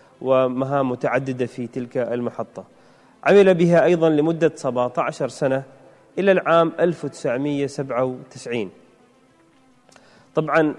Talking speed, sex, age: 85 wpm, male, 30-49